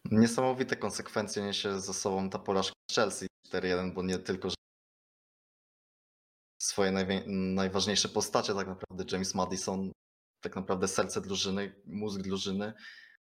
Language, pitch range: Polish, 95-105 Hz